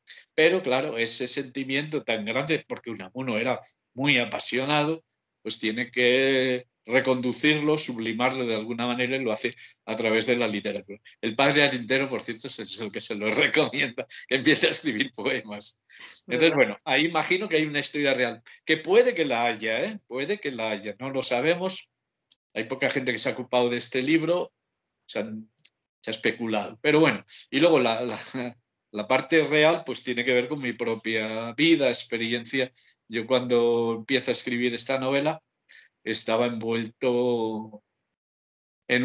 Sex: male